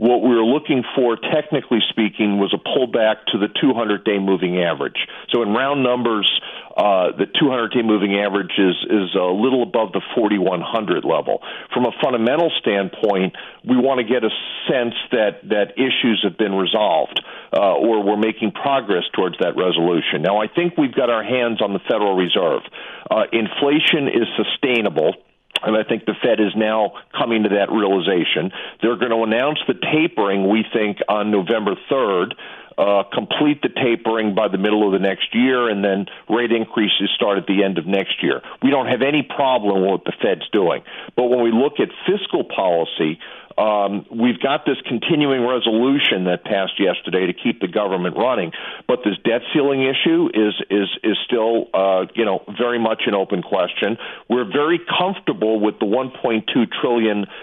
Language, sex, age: English, male, 50-69